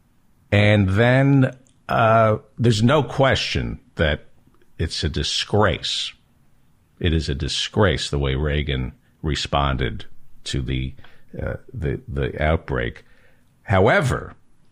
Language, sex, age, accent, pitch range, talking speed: English, male, 50-69, American, 90-120 Hz, 100 wpm